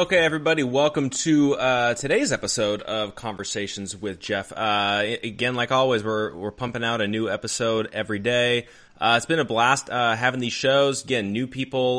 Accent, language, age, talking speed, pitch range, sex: American, English, 20-39, 180 wpm, 105-125 Hz, male